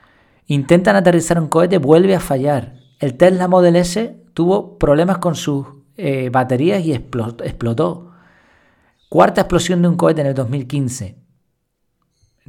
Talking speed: 130 wpm